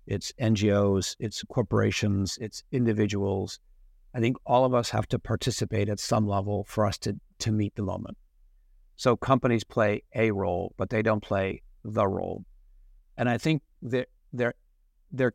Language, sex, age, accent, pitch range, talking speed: English, male, 50-69, American, 95-120 Hz, 160 wpm